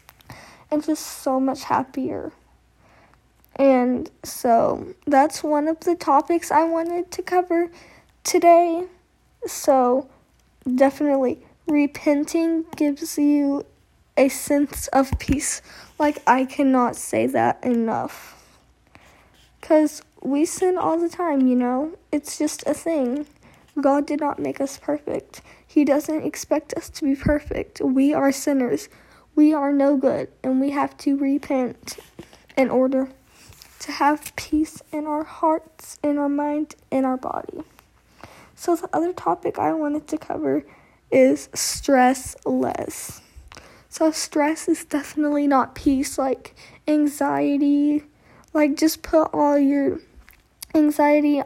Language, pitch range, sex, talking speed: English, 275-320 Hz, female, 125 wpm